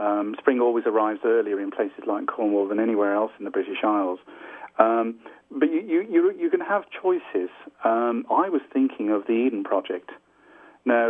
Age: 40-59